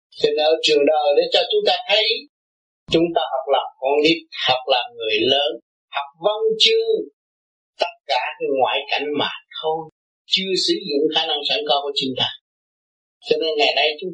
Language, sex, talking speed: Vietnamese, male, 185 wpm